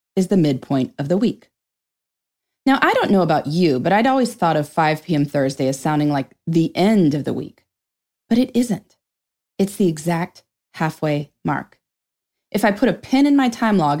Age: 30-49